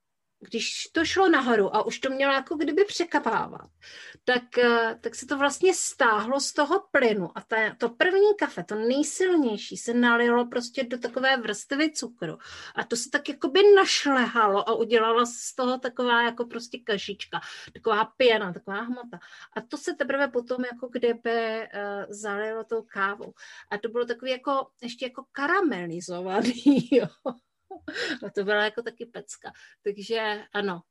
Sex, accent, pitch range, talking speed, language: female, native, 210-270 Hz, 155 wpm, Czech